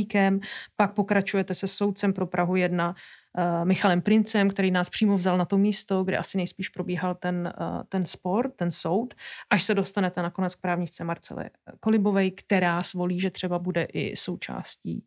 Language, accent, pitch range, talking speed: Czech, native, 185-210 Hz, 165 wpm